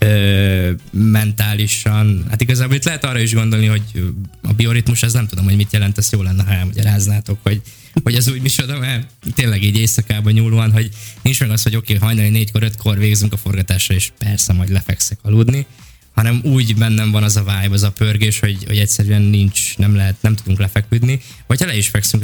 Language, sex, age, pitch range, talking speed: Hungarian, male, 20-39, 100-110 Hz, 205 wpm